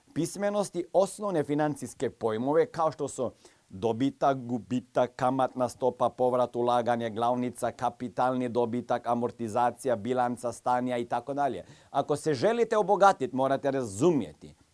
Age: 40-59